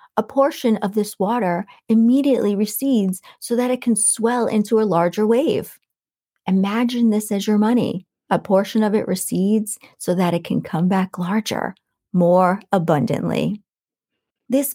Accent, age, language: American, 40-59, English